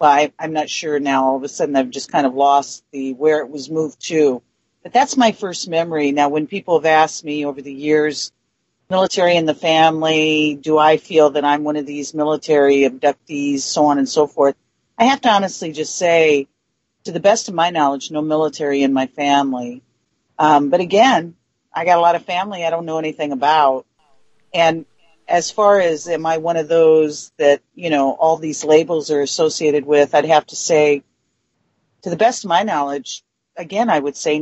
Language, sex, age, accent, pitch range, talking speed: English, female, 50-69, American, 145-175 Hz, 205 wpm